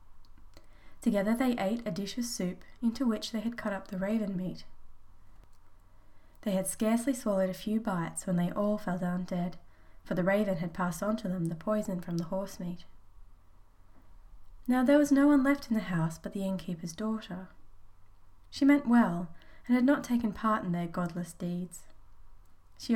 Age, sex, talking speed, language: 20-39, female, 180 wpm, English